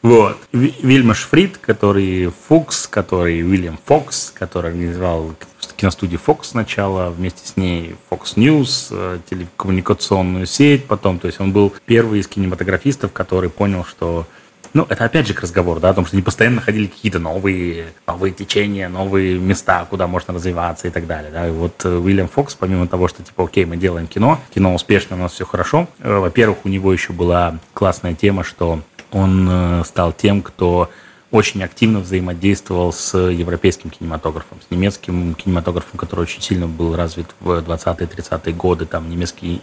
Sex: male